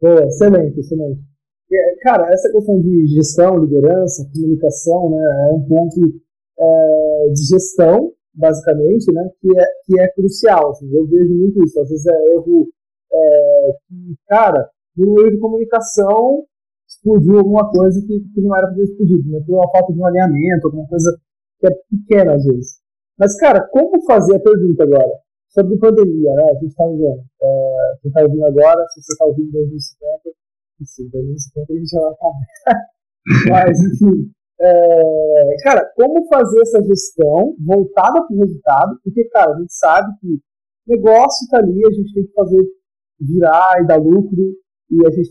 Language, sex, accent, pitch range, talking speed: Portuguese, male, Brazilian, 155-205 Hz, 175 wpm